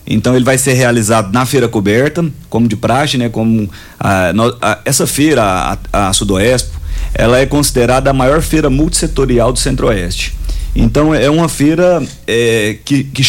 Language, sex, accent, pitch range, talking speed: Portuguese, male, Brazilian, 120-165 Hz, 145 wpm